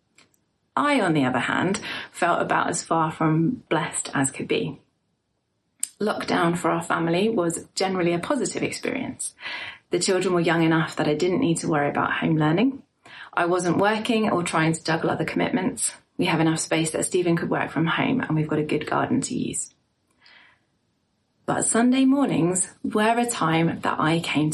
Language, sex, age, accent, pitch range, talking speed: English, female, 30-49, British, 155-205 Hz, 180 wpm